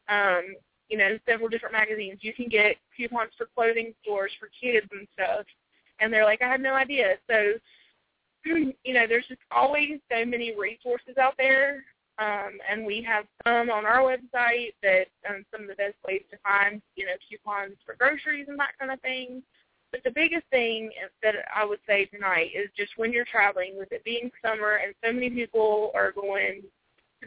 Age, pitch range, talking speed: 20-39, 205-240 Hz, 190 wpm